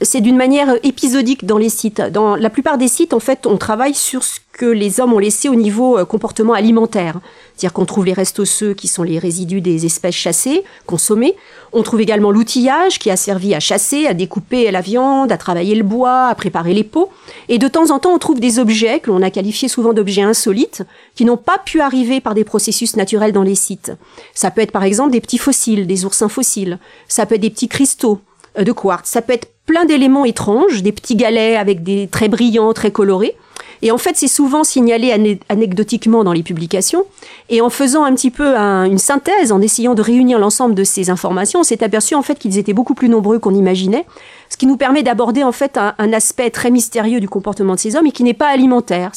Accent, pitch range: French, 200-260 Hz